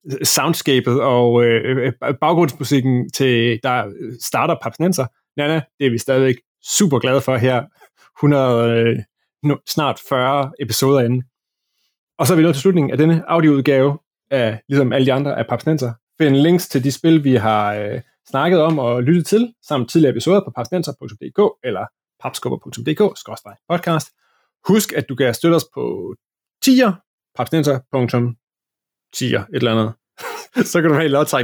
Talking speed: 145 wpm